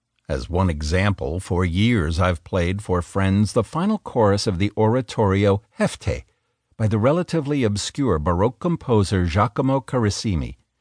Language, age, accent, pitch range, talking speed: English, 60-79, American, 90-125 Hz, 135 wpm